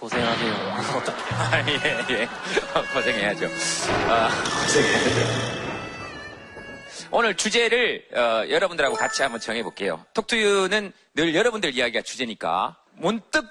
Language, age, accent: Korean, 40-59, native